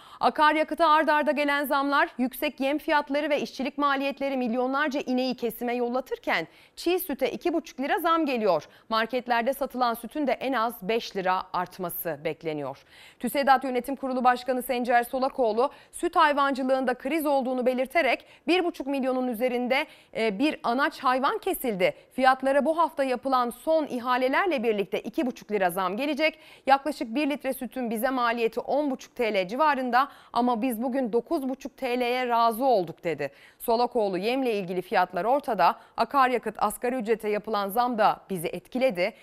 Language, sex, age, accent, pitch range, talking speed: Turkish, female, 30-49, native, 220-280 Hz, 140 wpm